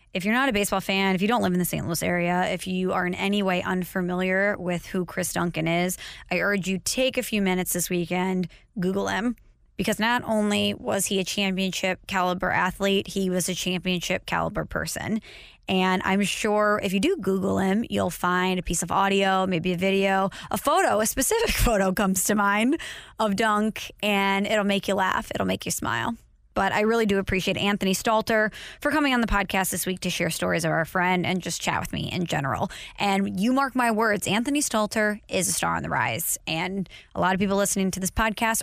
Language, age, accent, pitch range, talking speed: English, 20-39, American, 185-215 Hz, 215 wpm